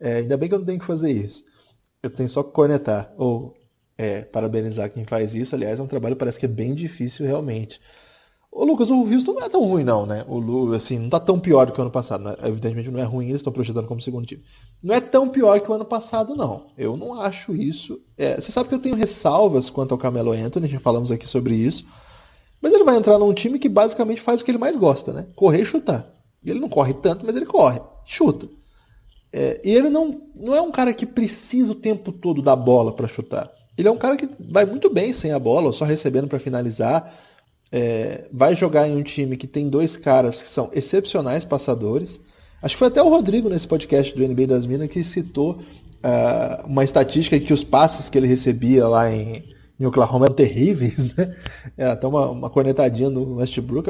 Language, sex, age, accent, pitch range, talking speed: Portuguese, male, 20-39, Brazilian, 125-200 Hz, 230 wpm